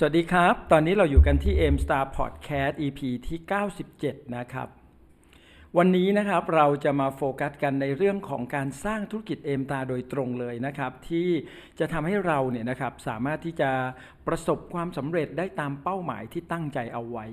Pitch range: 130-175 Hz